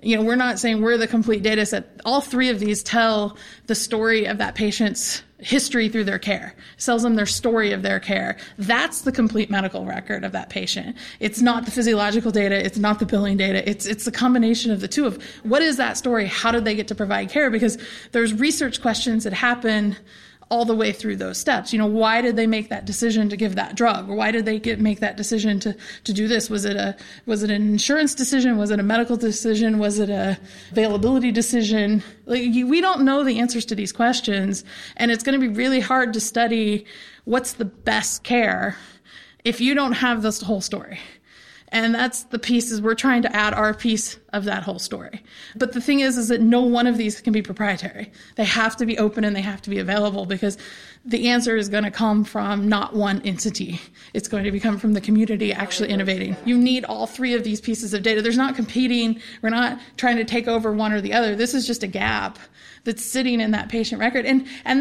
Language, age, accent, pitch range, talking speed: English, 30-49, American, 210-240 Hz, 225 wpm